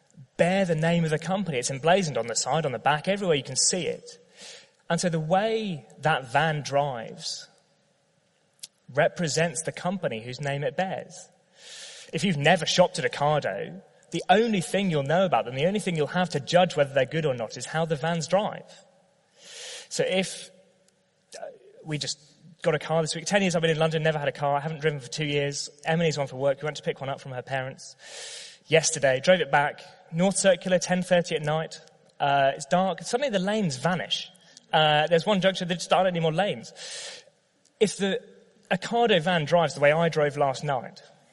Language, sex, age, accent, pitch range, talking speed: English, male, 20-39, British, 150-185 Hz, 205 wpm